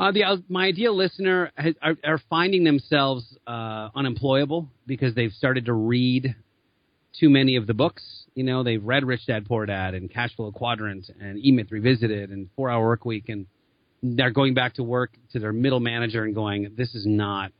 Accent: American